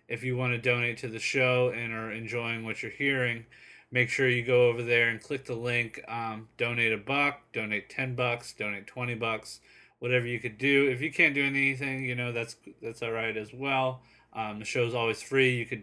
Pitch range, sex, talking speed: 110-130 Hz, male, 225 wpm